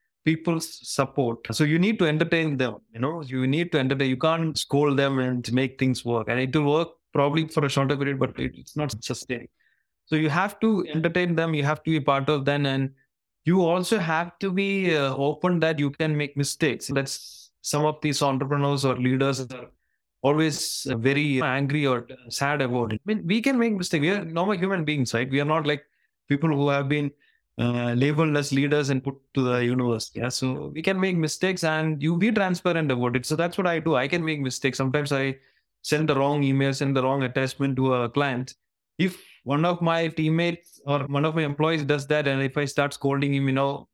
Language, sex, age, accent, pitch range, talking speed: English, male, 20-39, Indian, 135-165 Hz, 220 wpm